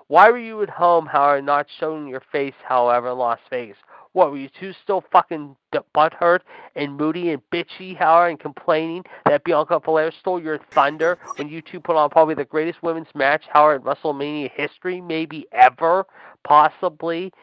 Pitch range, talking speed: 125-160 Hz, 180 wpm